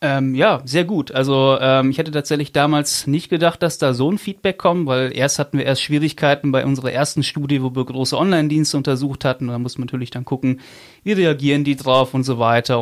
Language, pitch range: German, 125-150 Hz